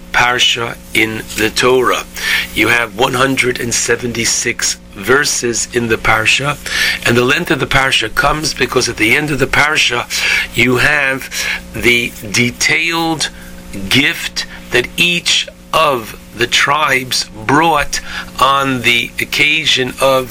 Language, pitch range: English, 85-135 Hz